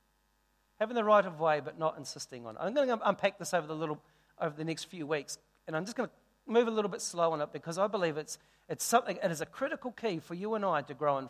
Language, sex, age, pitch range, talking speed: English, male, 40-59, 165-235 Hz, 290 wpm